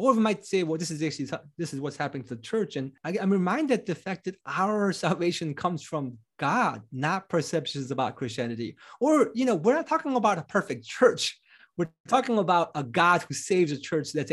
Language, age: English, 30-49